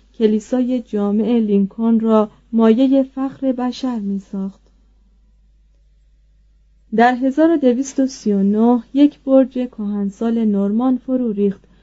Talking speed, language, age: 85 wpm, Persian, 30-49